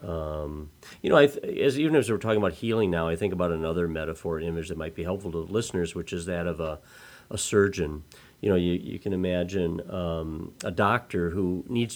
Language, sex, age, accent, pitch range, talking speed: English, male, 40-59, American, 85-105 Hz, 215 wpm